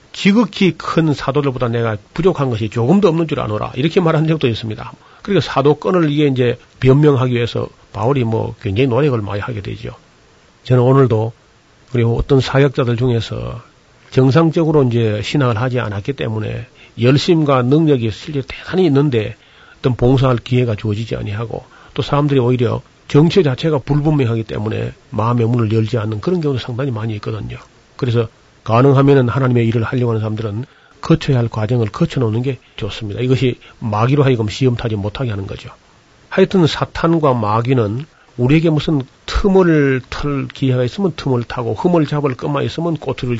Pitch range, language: 115-145 Hz, Korean